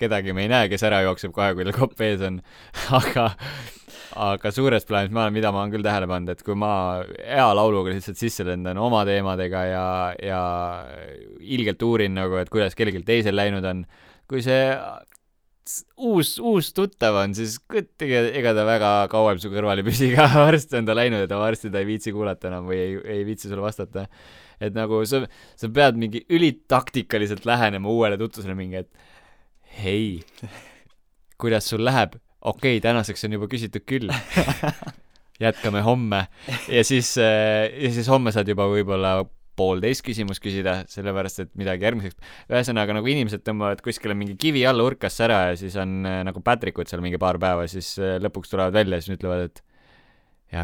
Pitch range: 95-115 Hz